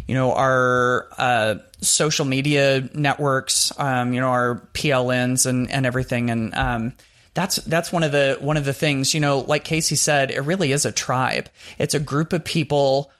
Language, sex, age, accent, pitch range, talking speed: English, male, 30-49, American, 130-150 Hz, 185 wpm